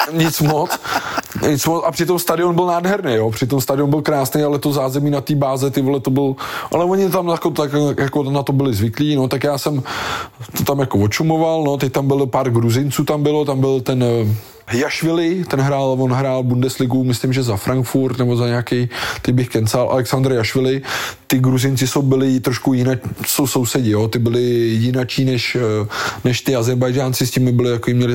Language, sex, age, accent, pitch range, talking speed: Czech, male, 20-39, native, 120-140 Hz, 200 wpm